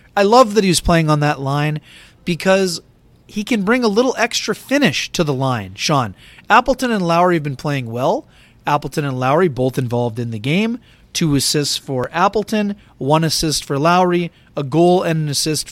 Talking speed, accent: 185 wpm, American